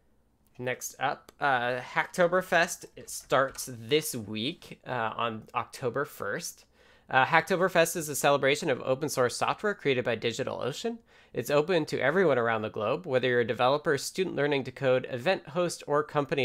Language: English